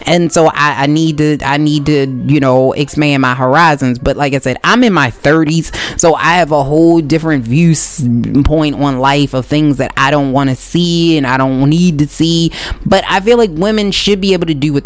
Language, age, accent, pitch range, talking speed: English, 20-39, American, 150-190 Hz, 225 wpm